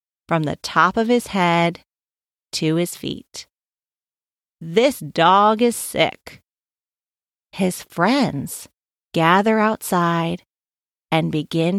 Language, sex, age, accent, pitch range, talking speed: English, female, 40-59, American, 170-245 Hz, 95 wpm